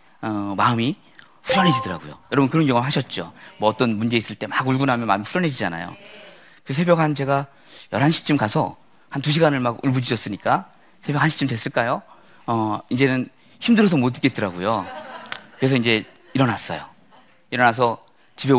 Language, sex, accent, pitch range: Korean, male, native, 100-135 Hz